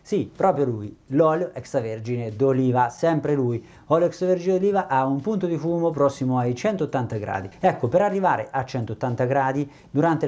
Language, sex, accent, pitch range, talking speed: Italian, male, native, 130-155 Hz, 160 wpm